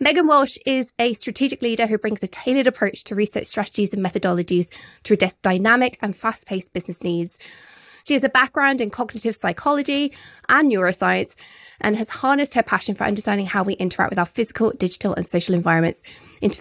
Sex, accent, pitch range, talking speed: female, British, 185-260 Hz, 180 wpm